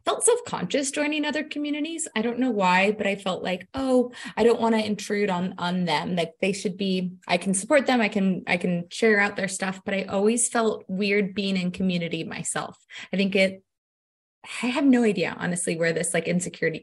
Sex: female